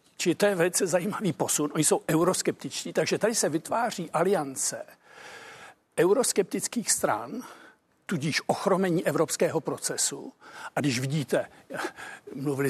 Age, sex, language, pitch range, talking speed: 60-79, male, Czech, 145-180 Hz, 110 wpm